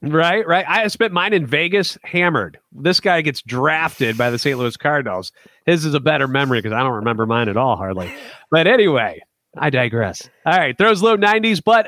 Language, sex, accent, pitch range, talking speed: English, male, American, 135-180 Hz, 200 wpm